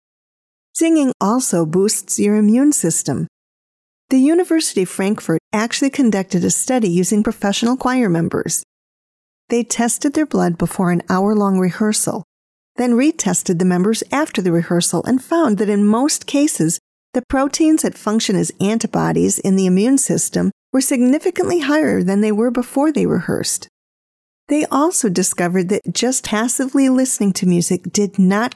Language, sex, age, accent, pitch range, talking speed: English, female, 40-59, American, 185-270 Hz, 145 wpm